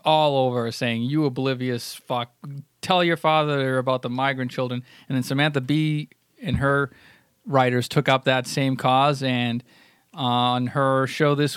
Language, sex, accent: English, male, American